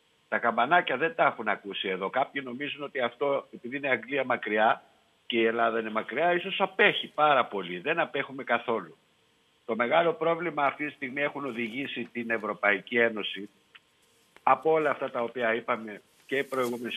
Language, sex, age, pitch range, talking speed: Greek, male, 60-79, 115-150 Hz, 170 wpm